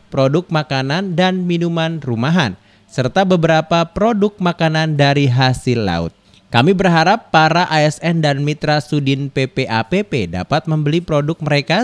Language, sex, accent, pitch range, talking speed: Indonesian, male, native, 125-175 Hz, 120 wpm